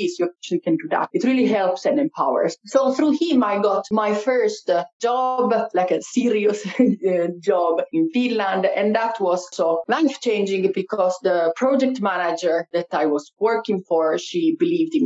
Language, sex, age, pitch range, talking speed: English, female, 30-49, 175-230 Hz, 165 wpm